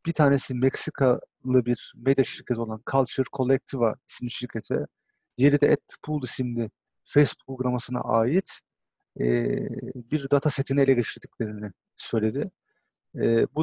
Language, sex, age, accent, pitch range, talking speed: Turkish, male, 40-59, native, 120-145 Hz, 110 wpm